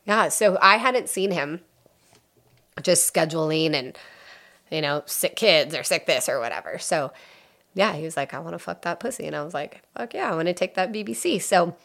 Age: 20-39